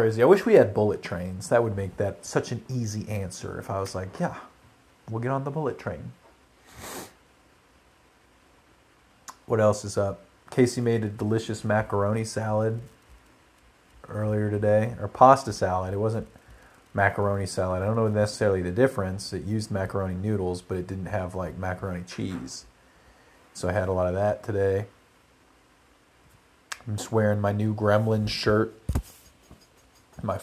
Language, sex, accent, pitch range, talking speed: English, male, American, 95-115 Hz, 150 wpm